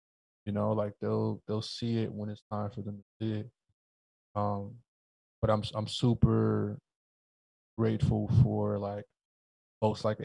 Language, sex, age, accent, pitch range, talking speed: English, male, 20-39, American, 105-115 Hz, 145 wpm